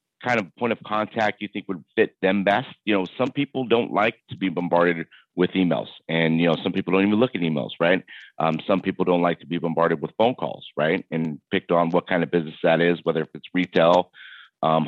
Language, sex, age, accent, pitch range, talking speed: English, male, 30-49, American, 85-100 Hz, 240 wpm